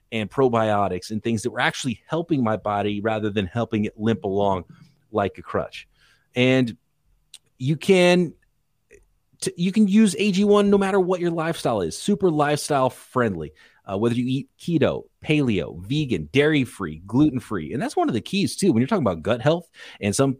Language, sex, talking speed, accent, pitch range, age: English, male, 175 wpm, American, 100-135 Hz, 30-49